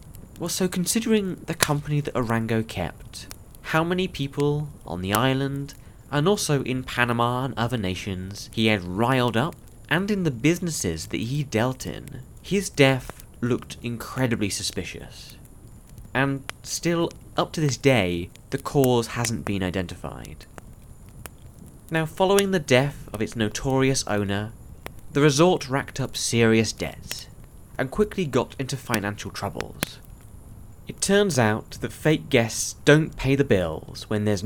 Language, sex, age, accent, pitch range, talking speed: English, male, 20-39, British, 105-145 Hz, 140 wpm